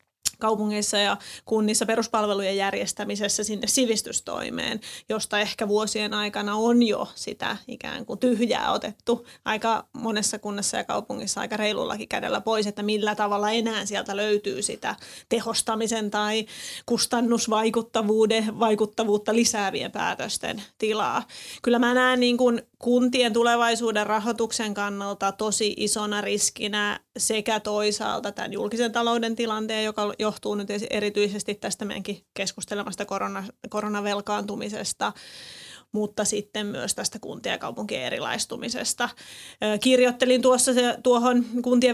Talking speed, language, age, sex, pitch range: 110 wpm, Finnish, 30-49, female, 210-235 Hz